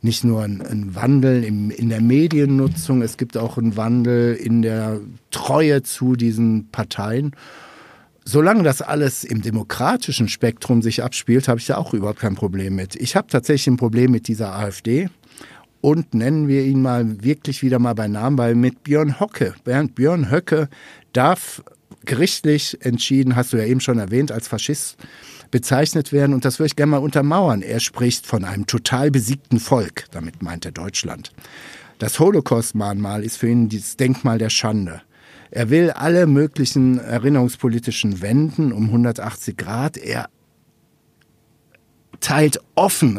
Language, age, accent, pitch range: German, 60-79, German, 115-145 Hz